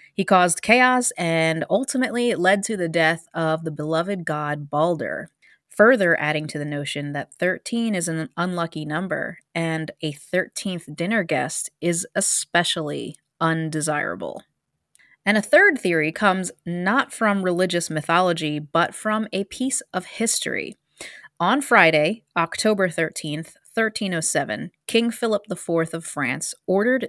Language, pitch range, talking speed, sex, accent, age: English, 155-195 Hz, 130 wpm, female, American, 20-39